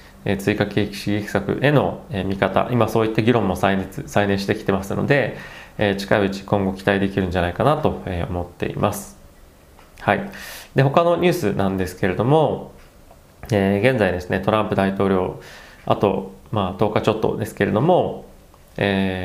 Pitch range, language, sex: 95-120 Hz, Japanese, male